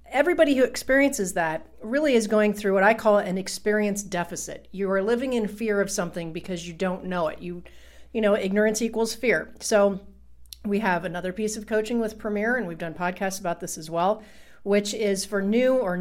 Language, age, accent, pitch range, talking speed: English, 40-59, American, 185-230 Hz, 200 wpm